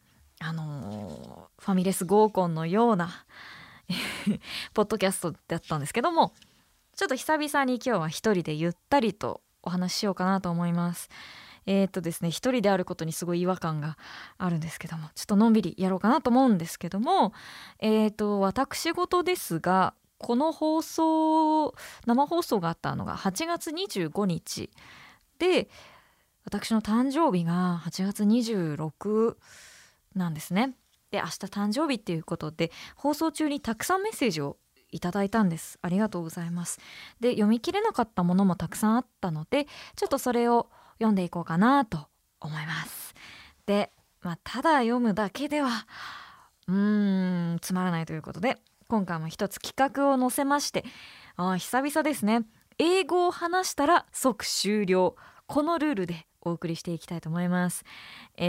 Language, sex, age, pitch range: Japanese, female, 20-39, 175-265 Hz